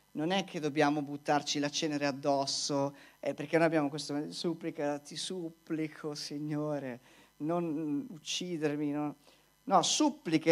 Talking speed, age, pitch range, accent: 120 wpm, 40-59, 140-190 Hz, native